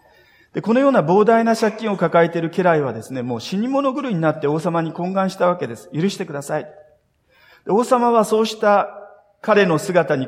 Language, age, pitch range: Japanese, 40-59, 140-205 Hz